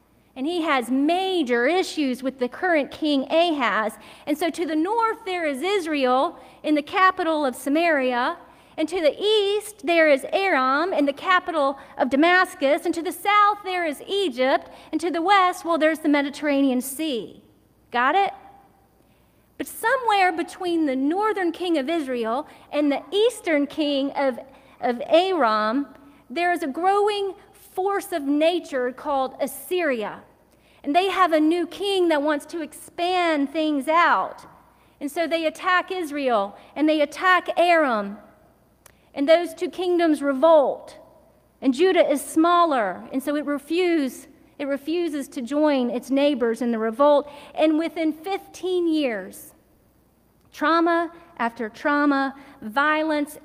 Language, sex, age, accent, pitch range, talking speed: English, female, 40-59, American, 275-345 Hz, 145 wpm